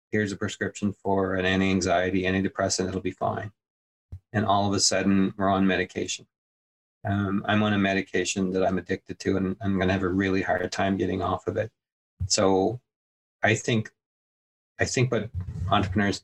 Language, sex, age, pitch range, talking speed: English, male, 30-49, 90-100 Hz, 170 wpm